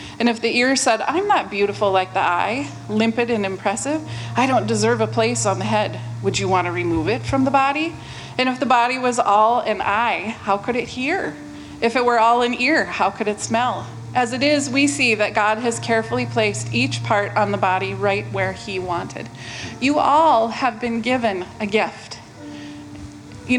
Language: English